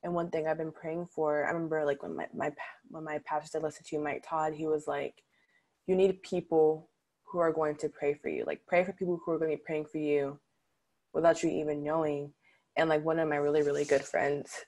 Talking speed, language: 240 wpm, English